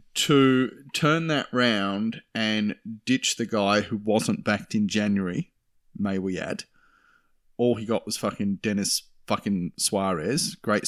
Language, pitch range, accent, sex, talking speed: English, 95-115 Hz, Australian, male, 140 wpm